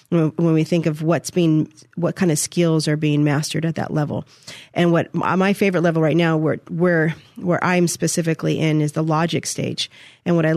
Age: 40-59